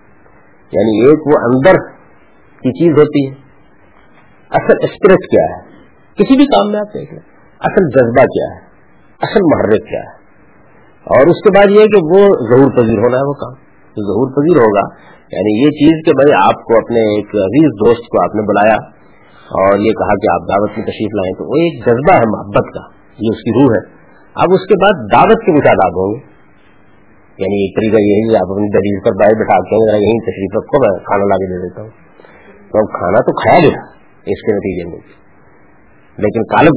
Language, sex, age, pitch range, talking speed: Urdu, male, 50-69, 105-170 Hz, 170 wpm